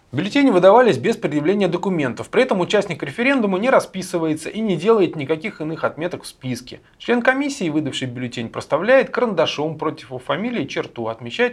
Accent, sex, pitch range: native, male, 130-210 Hz